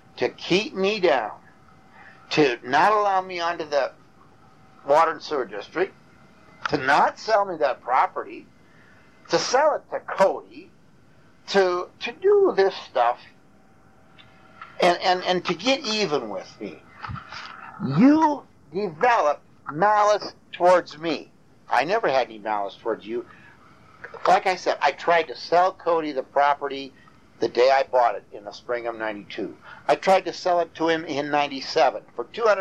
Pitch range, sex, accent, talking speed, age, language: 145-220 Hz, male, American, 150 wpm, 50-69, English